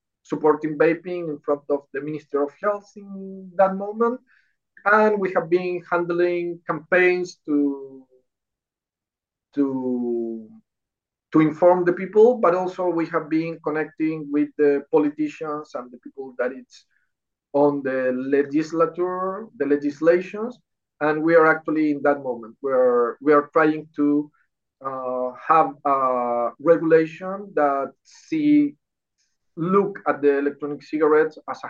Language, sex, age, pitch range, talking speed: English, male, 50-69, 145-180 Hz, 125 wpm